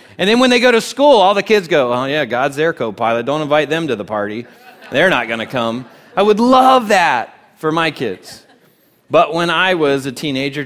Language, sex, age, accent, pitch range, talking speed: English, male, 30-49, American, 125-175 Hz, 225 wpm